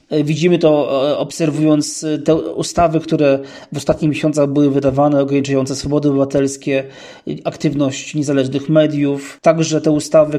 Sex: male